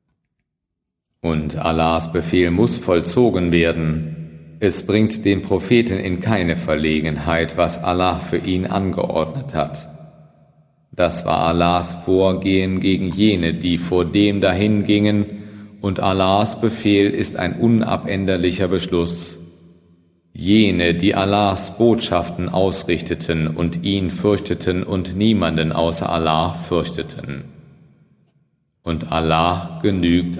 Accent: German